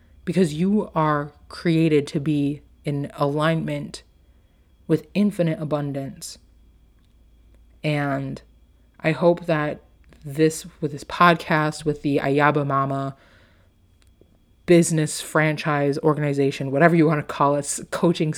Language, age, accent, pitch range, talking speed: English, 30-49, American, 140-165 Hz, 110 wpm